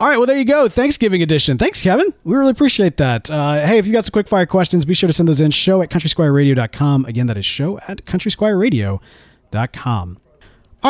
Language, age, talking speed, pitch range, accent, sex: English, 30-49, 215 wpm, 125-185 Hz, American, male